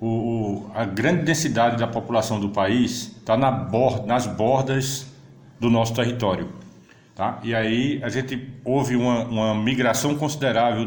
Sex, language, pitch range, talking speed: male, Portuguese, 115-145 Hz, 145 wpm